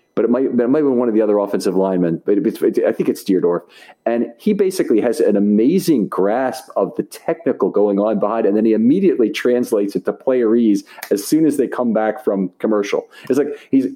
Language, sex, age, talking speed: English, male, 40-59, 230 wpm